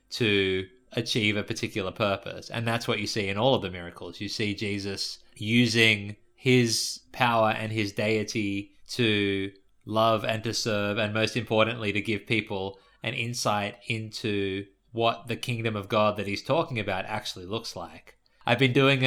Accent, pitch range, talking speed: Australian, 100-115 Hz, 165 wpm